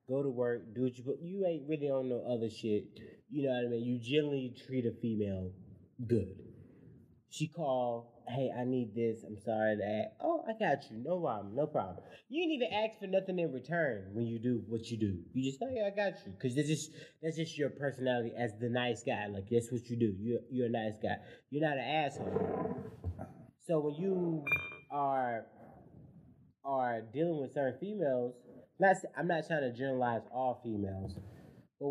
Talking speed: 200 wpm